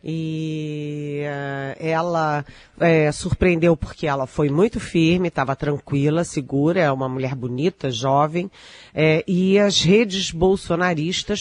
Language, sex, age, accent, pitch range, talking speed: Portuguese, female, 40-59, Brazilian, 150-175 Hz, 115 wpm